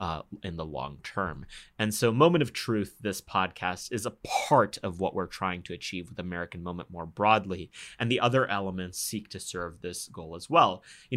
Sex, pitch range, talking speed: male, 90-115 Hz, 205 wpm